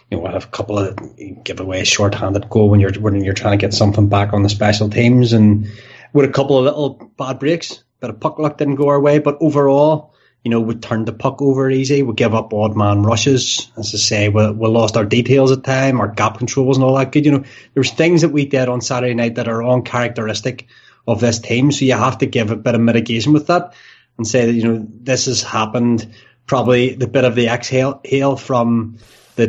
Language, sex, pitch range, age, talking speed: English, male, 110-135 Hz, 20-39, 245 wpm